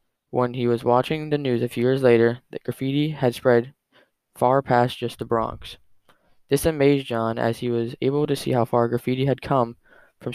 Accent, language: American, English